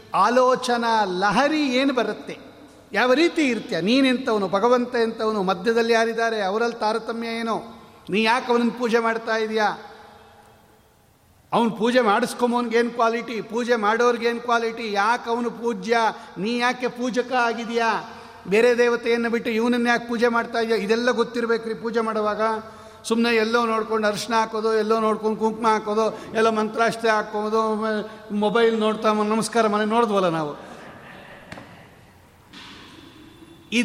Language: Kannada